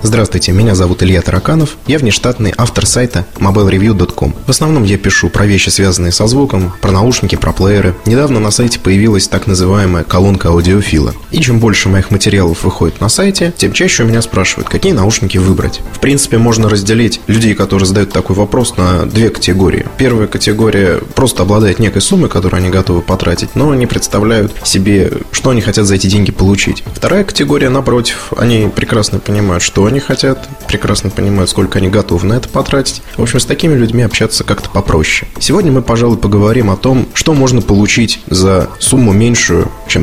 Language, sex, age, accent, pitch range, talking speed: Russian, male, 20-39, native, 95-115 Hz, 180 wpm